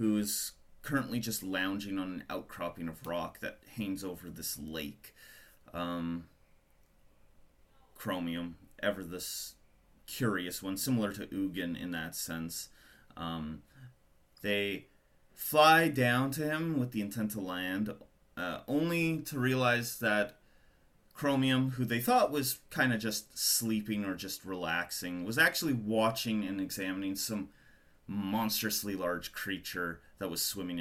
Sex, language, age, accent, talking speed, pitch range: male, English, 30-49, American, 130 wpm, 80-115 Hz